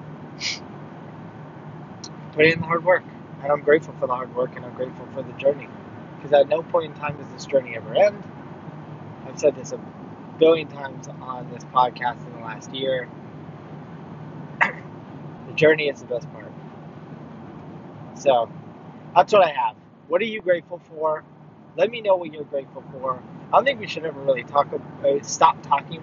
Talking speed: 175 wpm